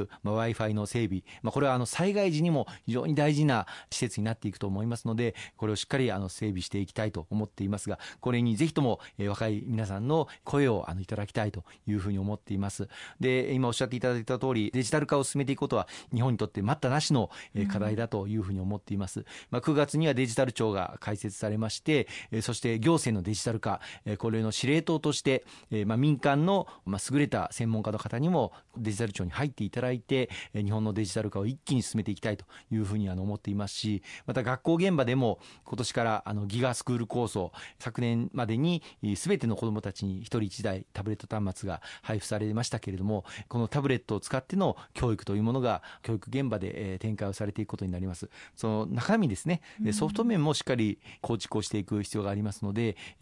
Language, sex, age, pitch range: Japanese, male, 40-59, 105-130 Hz